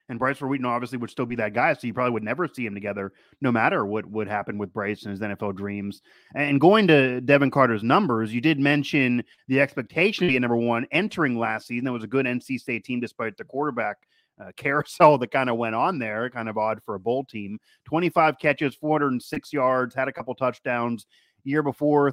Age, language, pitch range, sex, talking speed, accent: 30-49, English, 115-140 Hz, male, 220 wpm, American